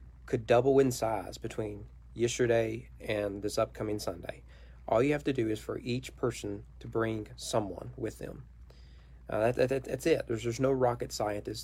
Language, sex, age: English, male, 40-59